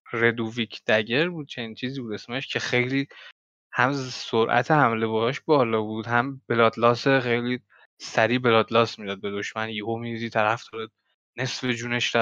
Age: 10-29